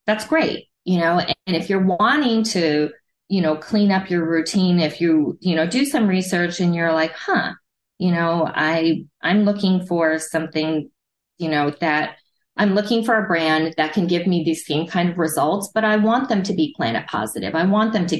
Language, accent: English, American